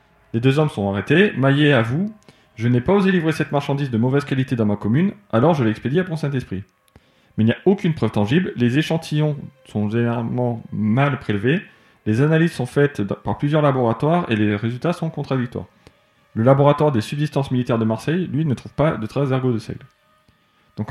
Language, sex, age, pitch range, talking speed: French, male, 20-39, 115-160 Hz, 205 wpm